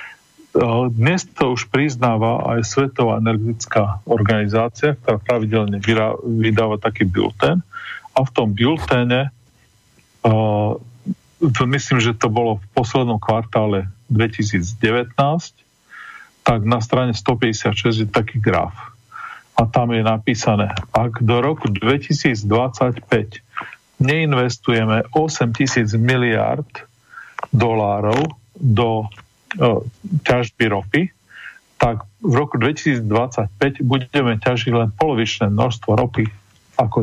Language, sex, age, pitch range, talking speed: Slovak, male, 40-59, 110-125 Hz, 95 wpm